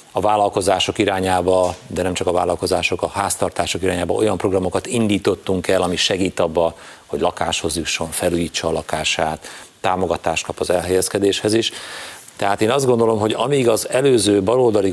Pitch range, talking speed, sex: 90-100 Hz, 155 wpm, male